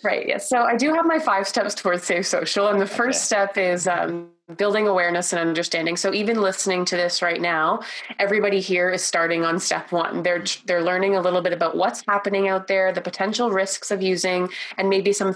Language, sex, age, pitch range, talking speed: English, female, 20-39, 175-205 Hz, 215 wpm